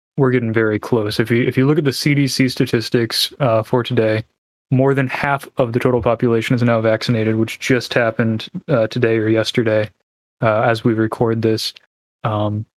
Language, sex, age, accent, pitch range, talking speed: English, male, 20-39, American, 115-130 Hz, 190 wpm